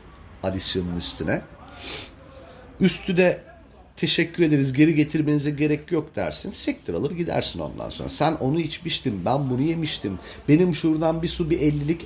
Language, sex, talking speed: Turkish, male, 140 wpm